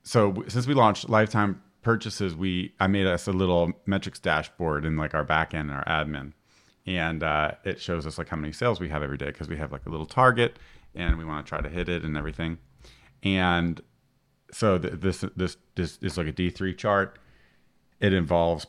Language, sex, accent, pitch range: English, male, American, 80-100 Hz